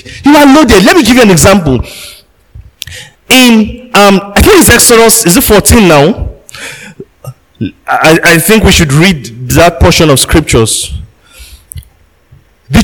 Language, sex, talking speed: English, male, 145 wpm